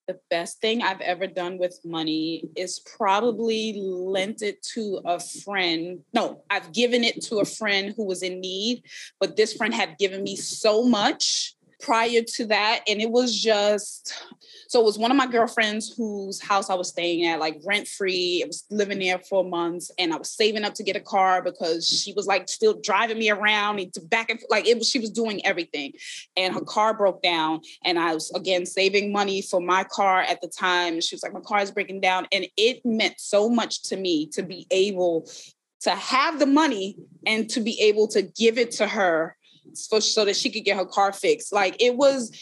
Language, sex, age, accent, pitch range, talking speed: English, female, 20-39, American, 185-230 Hz, 215 wpm